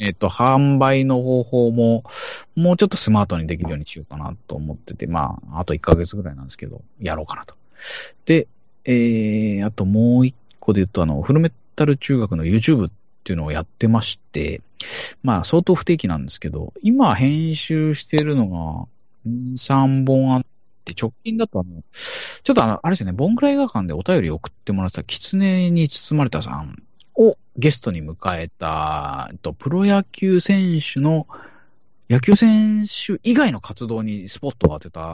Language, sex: Japanese, male